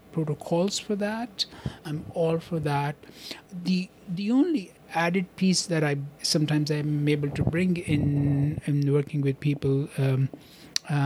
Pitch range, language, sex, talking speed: 150-185 Hz, English, male, 140 wpm